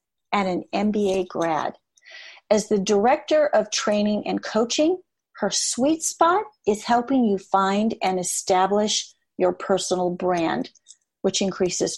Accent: American